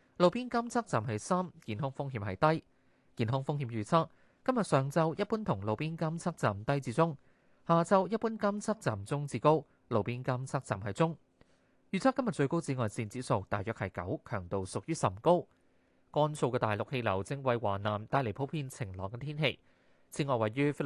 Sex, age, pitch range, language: male, 20-39, 115-160 Hz, Chinese